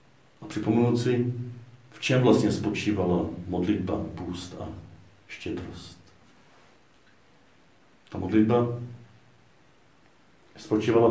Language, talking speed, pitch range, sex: Czech, 75 wpm, 95-110 Hz, male